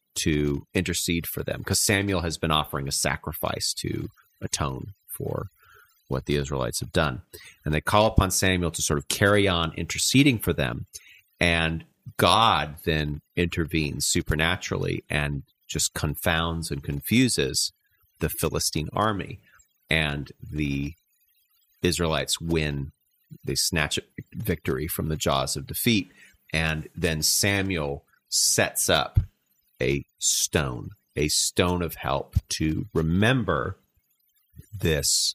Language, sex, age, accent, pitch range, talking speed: English, male, 30-49, American, 75-95 Hz, 120 wpm